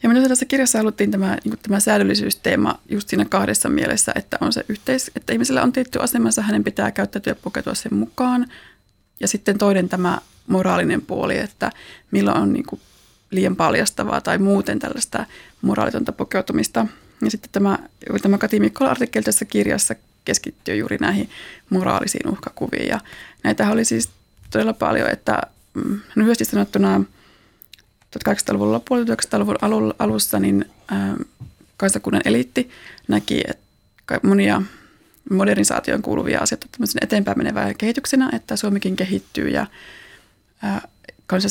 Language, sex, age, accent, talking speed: Finnish, female, 20-39, native, 125 wpm